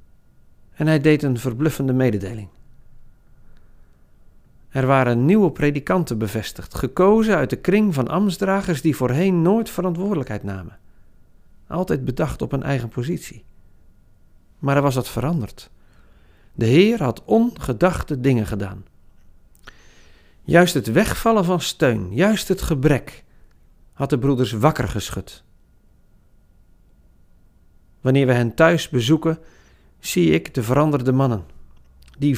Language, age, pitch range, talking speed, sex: Dutch, 50-69, 95-150 Hz, 115 wpm, male